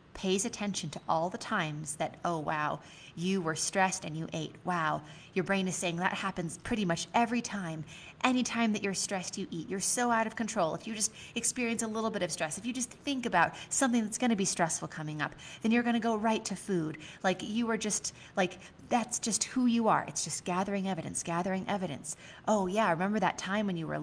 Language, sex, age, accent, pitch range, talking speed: English, female, 30-49, American, 170-225 Hz, 230 wpm